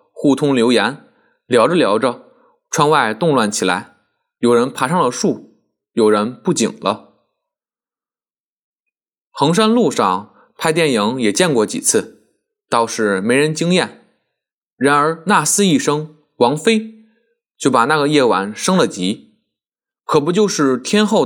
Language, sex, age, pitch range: Chinese, male, 20-39, 145-225 Hz